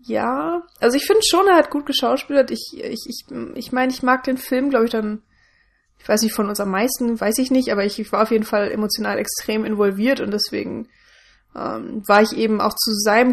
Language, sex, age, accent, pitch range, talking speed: German, female, 20-39, German, 200-230 Hz, 220 wpm